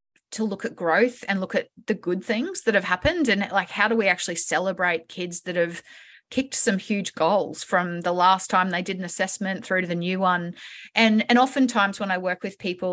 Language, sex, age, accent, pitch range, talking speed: English, female, 30-49, Australian, 175-210 Hz, 225 wpm